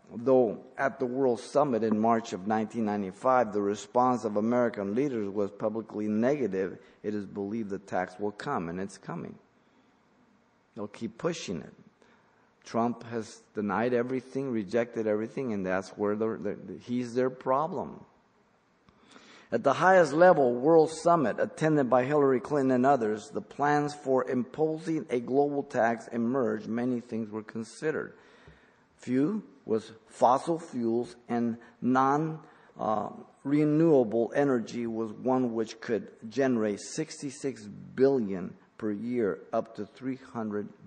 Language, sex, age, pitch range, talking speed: English, male, 50-69, 115-135 Hz, 130 wpm